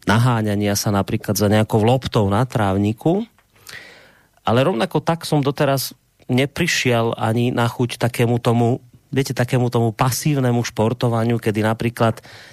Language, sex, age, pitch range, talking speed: Slovak, male, 30-49, 110-145 Hz, 125 wpm